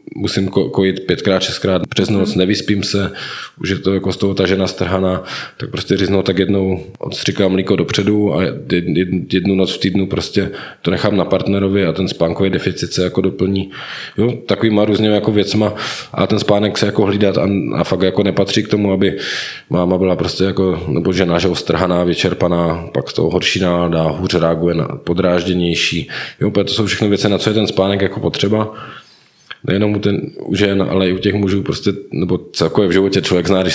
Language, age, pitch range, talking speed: Czech, 20-39, 90-100 Hz, 195 wpm